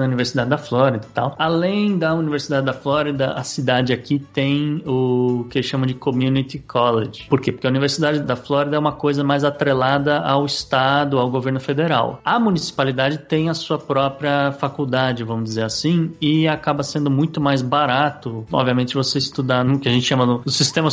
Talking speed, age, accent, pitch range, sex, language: 185 wpm, 20-39, Brazilian, 125-150 Hz, male, Portuguese